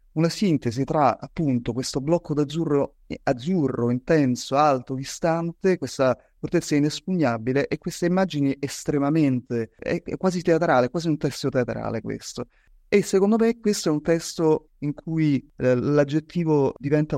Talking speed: 135 wpm